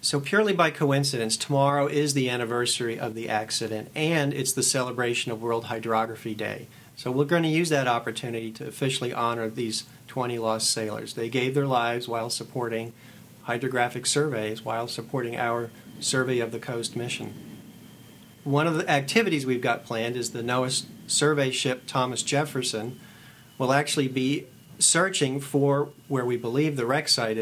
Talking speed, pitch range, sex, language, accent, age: 160 wpm, 115-140 Hz, male, English, American, 40-59